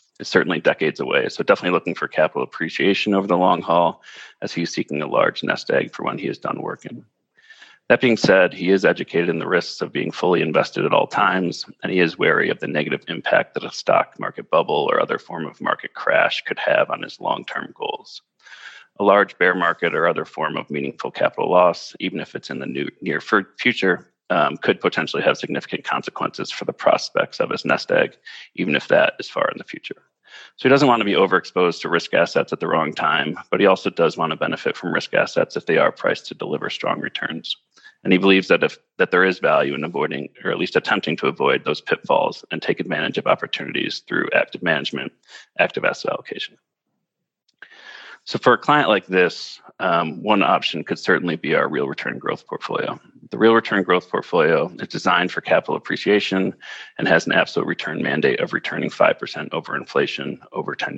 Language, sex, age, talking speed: English, male, 40-59, 205 wpm